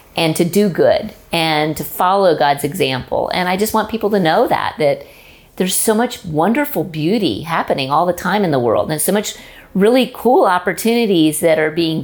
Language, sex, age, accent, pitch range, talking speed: English, female, 40-59, American, 165-210 Hz, 195 wpm